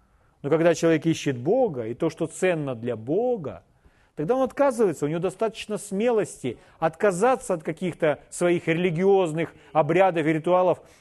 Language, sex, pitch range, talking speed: Russian, male, 150-215 Hz, 140 wpm